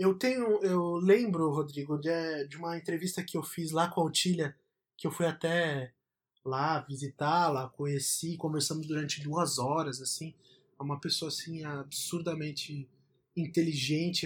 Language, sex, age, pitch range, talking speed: Portuguese, male, 20-39, 155-200 Hz, 140 wpm